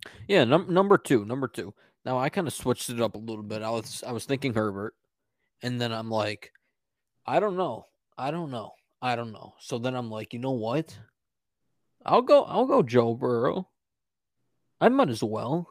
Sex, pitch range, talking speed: male, 110-130 Hz, 200 wpm